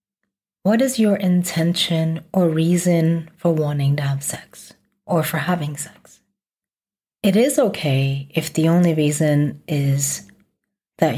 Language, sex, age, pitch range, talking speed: English, female, 40-59, 150-200 Hz, 130 wpm